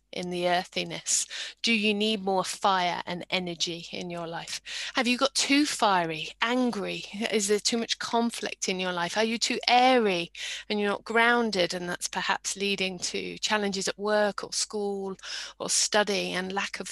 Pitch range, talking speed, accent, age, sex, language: 190-225 Hz, 175 wpm, British, 30-49, female, English